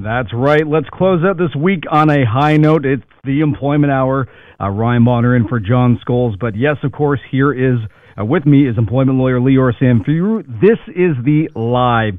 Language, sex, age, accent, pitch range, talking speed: English, male, 40-59, American, 115-145 Hz, 195 wpm